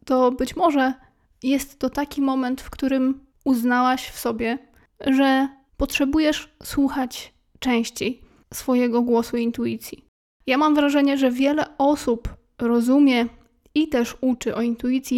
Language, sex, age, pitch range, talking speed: Polish, female, 20-39, 245-270 Hz, 125 wpm